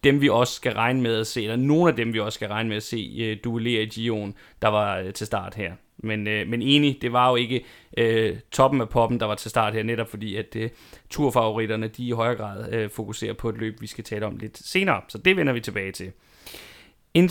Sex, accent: male, native